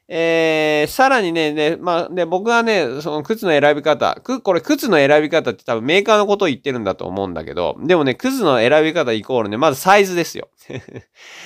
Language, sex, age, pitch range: Japanese, male, 20-39, 115-180 Hz